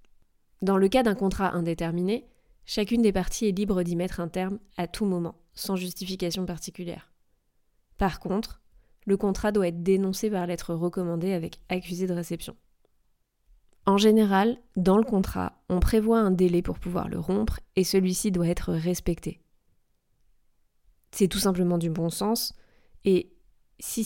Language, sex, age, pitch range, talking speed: French, female, 20-39, 170-195 Hz, 150 wpm